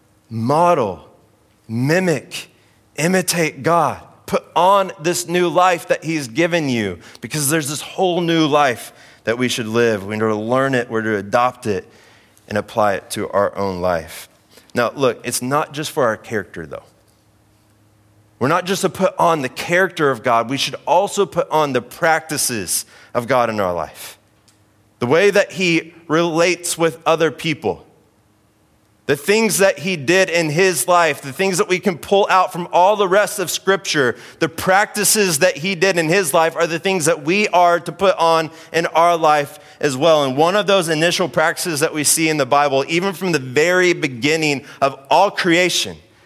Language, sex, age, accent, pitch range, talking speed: English, male, 30-49, American, 110-175 Hz, 185 wpm